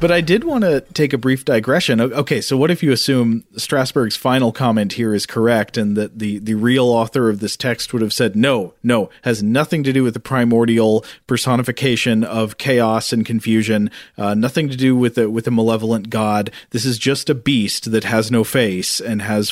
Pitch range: 105-130 Hz